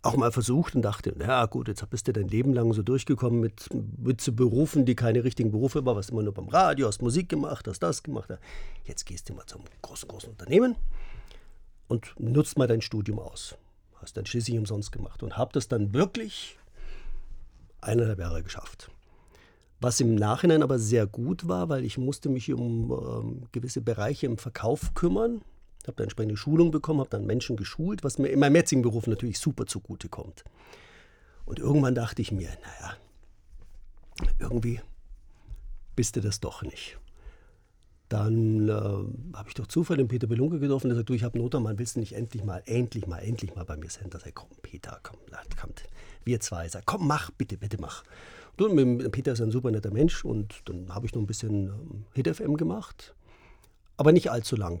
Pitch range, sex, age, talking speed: 100-130 Hz, male, 50-69, 195 wpm